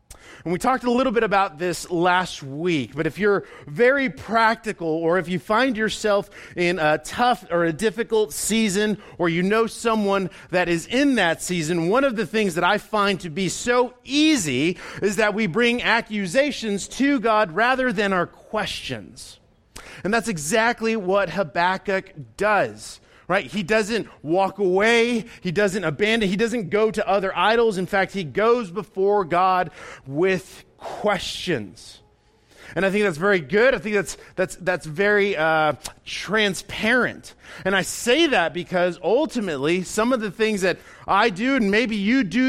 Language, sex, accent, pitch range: English, male, American, 180-230 Hz